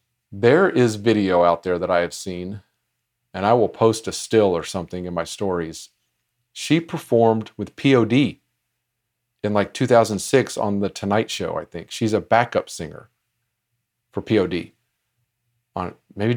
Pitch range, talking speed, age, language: 105-120 Hz, 150 wpm, 40-59, English